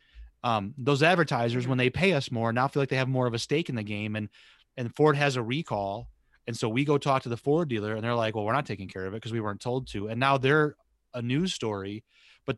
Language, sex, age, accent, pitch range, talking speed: English, male, 30-49, American, 110-150 Hz, 270 wpm